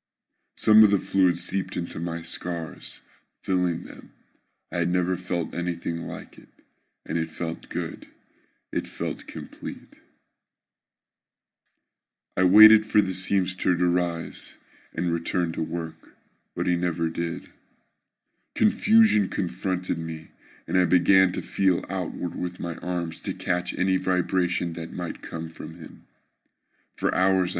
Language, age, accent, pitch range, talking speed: English, 20-39, American, 85-95 Hz, 135 wpm